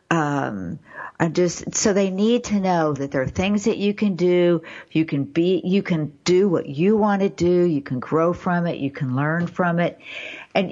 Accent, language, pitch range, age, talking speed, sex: American, English, 160-205 Hz, 50-69, 215 wpm, female